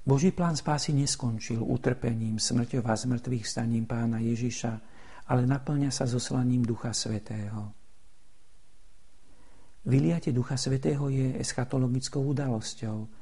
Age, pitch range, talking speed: 50-69, 110-125 Hz, 105 wpm